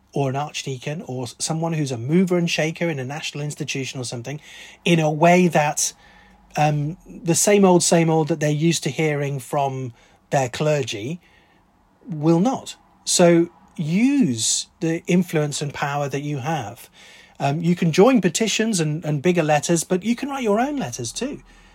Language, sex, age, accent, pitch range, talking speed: English, male, 40-59, British, 135-180 Hz, 170 wpm